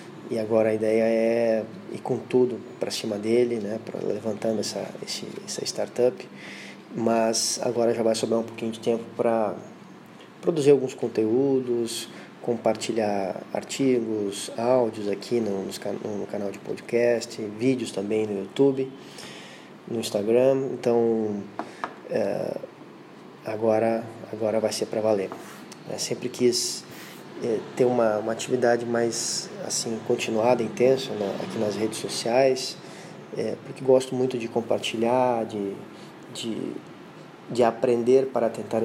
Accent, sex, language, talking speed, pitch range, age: Brazilian, male, Portuguese, 125 wpm, 110-120 Hz, 20-39